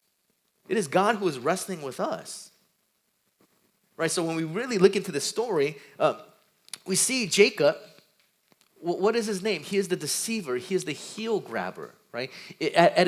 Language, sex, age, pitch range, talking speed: English, male, 30-49, 155-205 Hz, 170 wpm